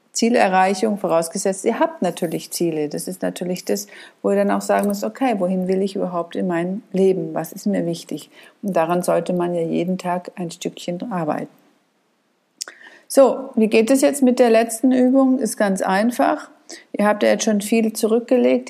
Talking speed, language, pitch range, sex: 185 wpm, German, 185-245 Hz, female